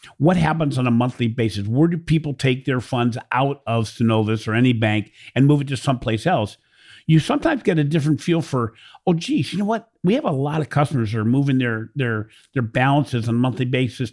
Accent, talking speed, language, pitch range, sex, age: American, 225 wpm, English, 120-155 Hz, male, 50-69